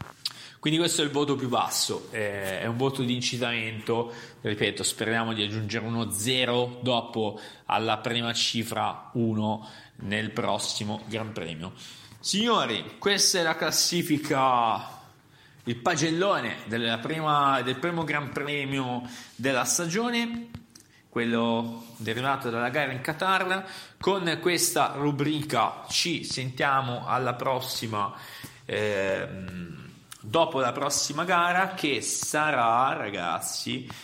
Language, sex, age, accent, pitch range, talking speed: Italian, male, 30-49, native, 115-155 Hz, 115 wpm